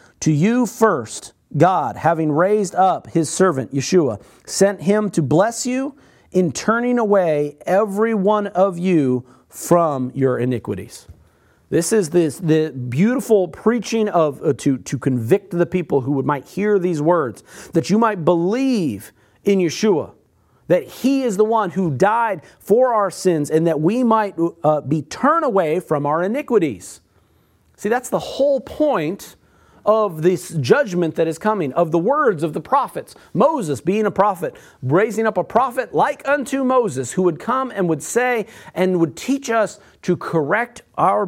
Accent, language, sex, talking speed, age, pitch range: American, English, male, 165 wpm, 40-59, 155-220 Hz